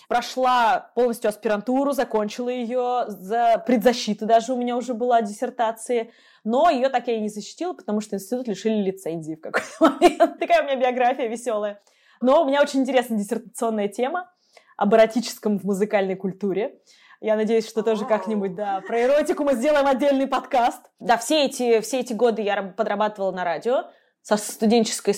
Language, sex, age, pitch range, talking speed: Russian, female, 20-39, 205-260 Hz, 155 wpm